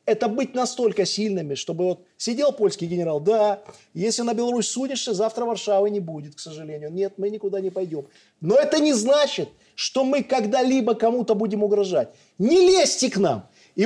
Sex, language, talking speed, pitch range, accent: male, Russian, 175 wpm, 175-250 Hz, native